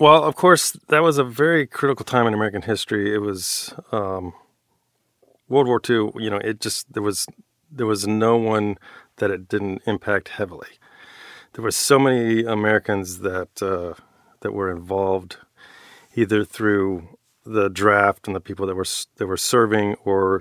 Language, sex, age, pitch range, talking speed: English, male, 40-59, 100-115 Hz, 165 wpm